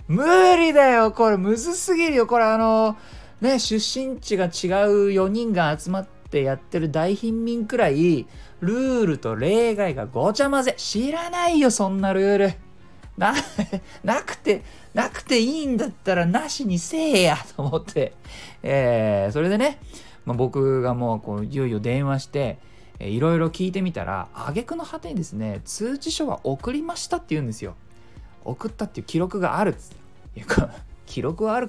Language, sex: Japanese, male